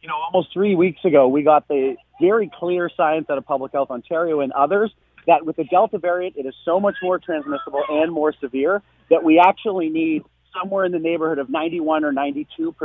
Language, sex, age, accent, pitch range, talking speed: English, male, 40-59, American, 150-185 Hz, 200 wpm